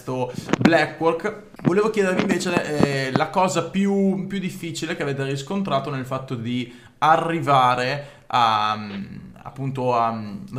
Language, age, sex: Italian, 20-39, male